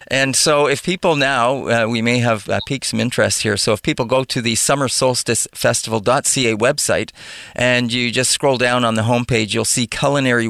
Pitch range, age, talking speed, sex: 115-145 Hz, 40-59, 195 wpm, male